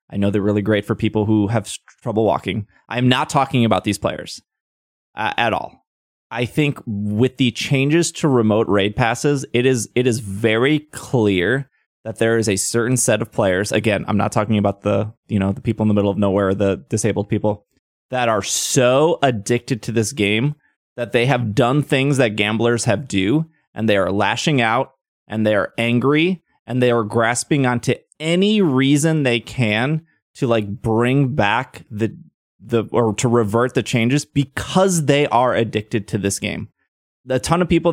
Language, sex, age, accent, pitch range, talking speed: English, male, 20-39, American, 105-140 Hz, 185 wpm